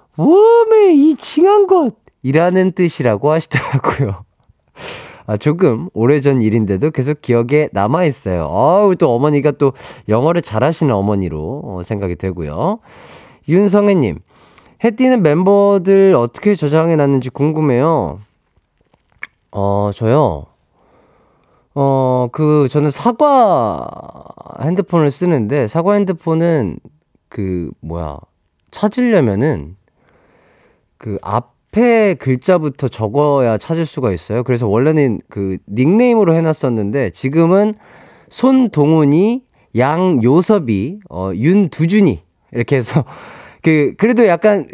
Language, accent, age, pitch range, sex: Korean, native, 30-49, 115-185 Hz, male